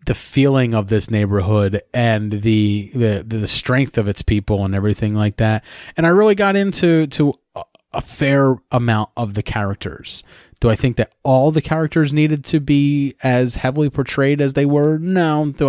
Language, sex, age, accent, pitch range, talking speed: English, male, 30-49, American, 105-130 Hz, 180 wpm